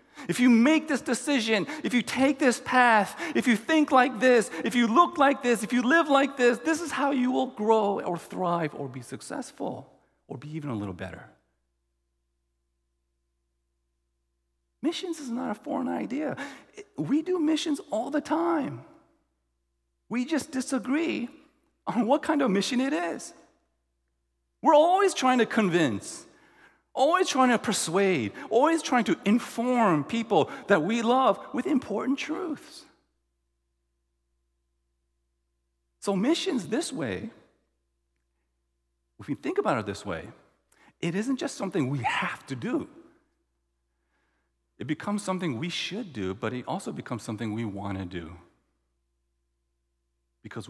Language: English